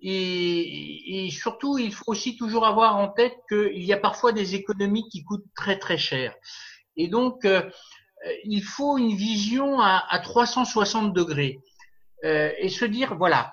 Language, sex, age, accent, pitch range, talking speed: French, male, 50-69, French, 160-220 Hz, 165 wpm